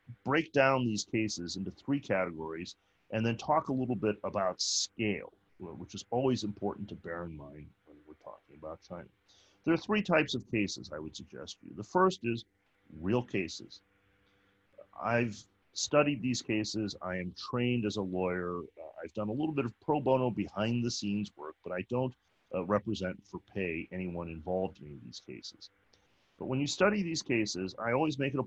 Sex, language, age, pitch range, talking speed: male, English, 40-59, 95-120 Hz, 190 wpm